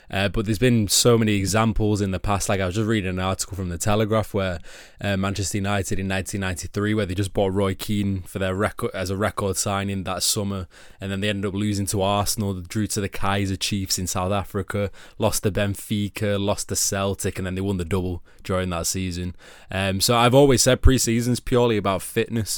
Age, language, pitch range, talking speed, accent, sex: 20-39, English, 95-110 Hz, 220 wpm, British, male